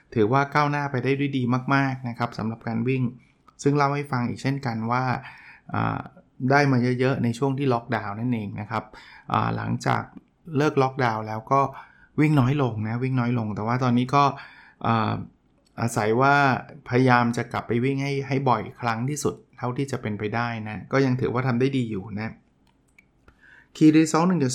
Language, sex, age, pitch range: Thai, male, 20-39, 115-140 Hz